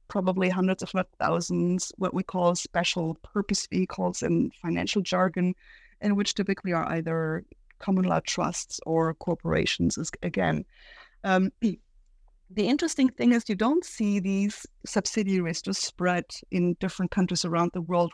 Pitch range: 170-200 Hz